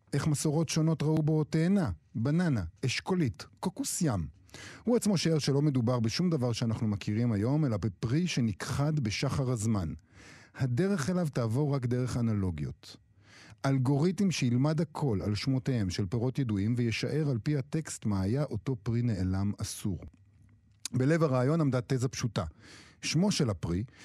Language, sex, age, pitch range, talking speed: Hebrew, male, 50-69, 105-145 Hz, 140 wpm